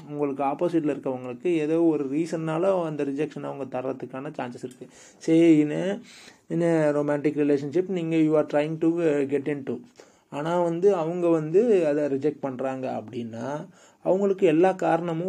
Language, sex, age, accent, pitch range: Tamil, male, 30-49, native, 140-170 Hz